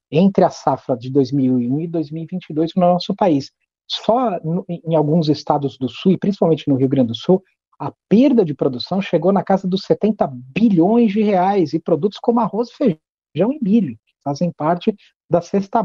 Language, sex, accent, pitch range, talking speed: Portuguese, male, Brazilian, 150-210 Hz, 180 wpm